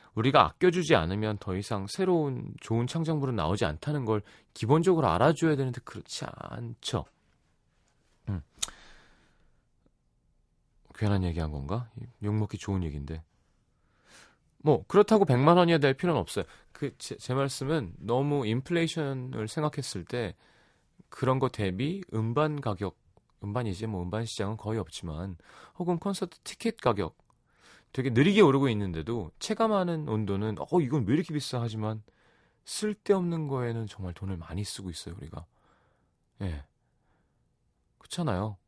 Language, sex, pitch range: Korean, male, 100-155 Hz